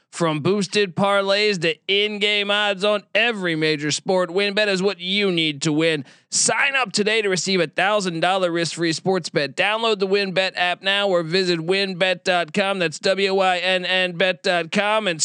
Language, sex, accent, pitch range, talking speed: English, male, American, 150-190 Hz, 155 wpm